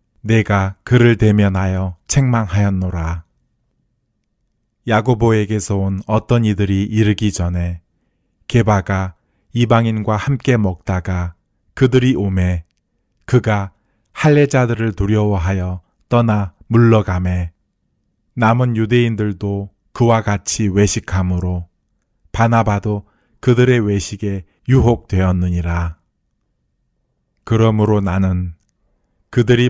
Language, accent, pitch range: Korean, native, 95-115 Hz